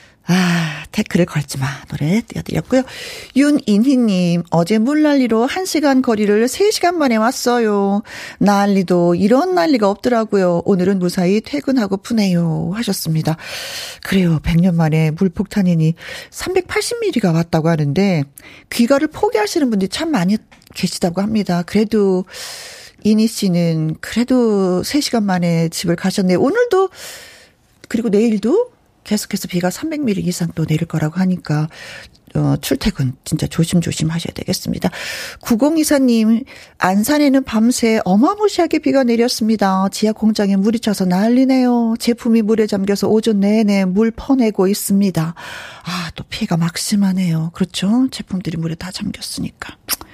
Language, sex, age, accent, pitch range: Korean, female, 40-59, native, 180-240 Hz